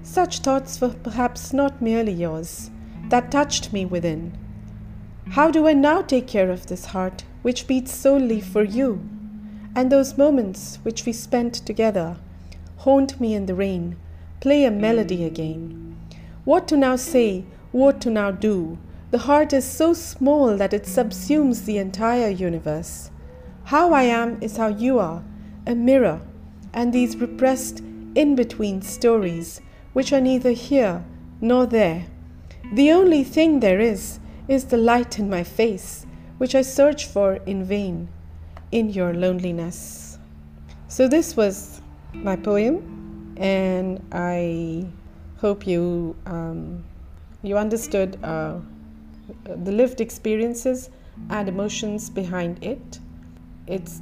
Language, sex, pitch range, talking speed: Punjabi, female, 170-245 Hz, 135 wpm